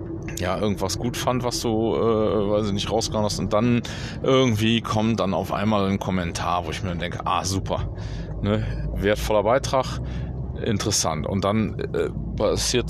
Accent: German